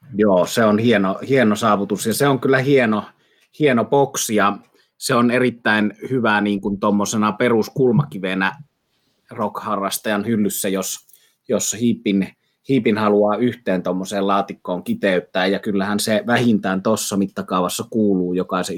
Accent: native